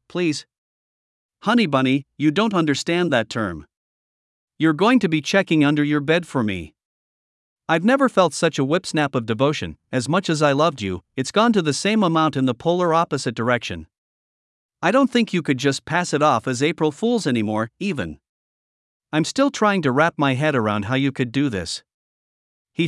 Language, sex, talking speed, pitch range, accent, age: English, male, 190 wpm, 120-175 Hz, American, 50-69